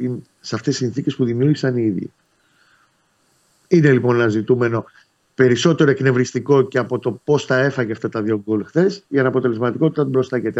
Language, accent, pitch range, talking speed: Greek, native, 120-155 Hz, 165 wpm